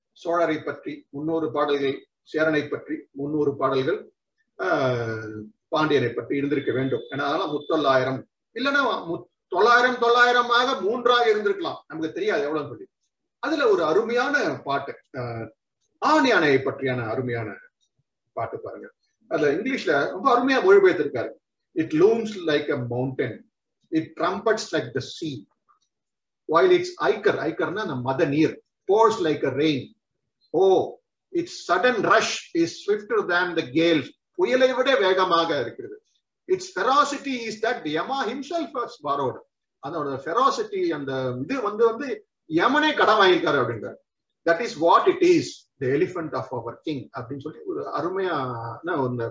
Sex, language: male, Tamil